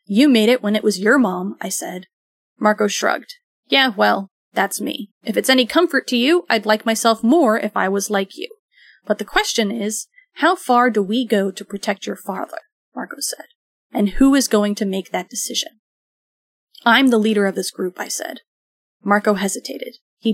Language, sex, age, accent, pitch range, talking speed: English, female, 30-49, American, 205-265 Hz, 190 wpm